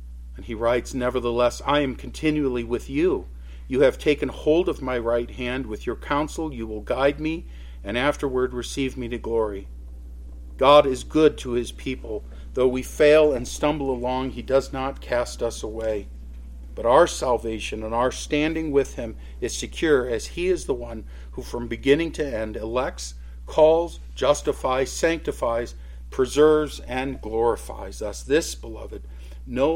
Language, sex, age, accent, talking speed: English, male, 50-69, American, 160 wpm